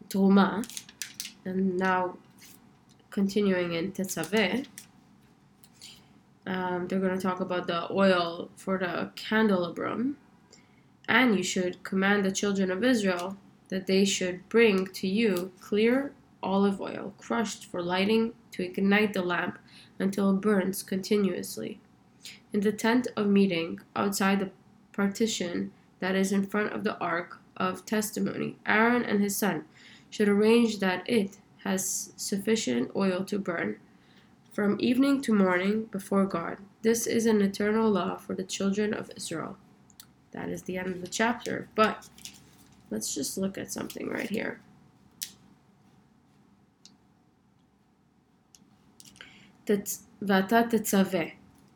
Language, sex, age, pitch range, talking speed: English, female, 20-39, 185-215 Hz, 120 wpm